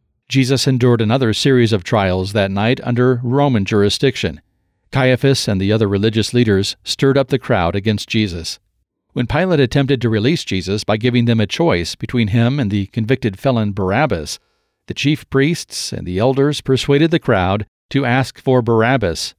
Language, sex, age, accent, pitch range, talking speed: English, male, 40-59, American, 105-130 Hz, 165 wpm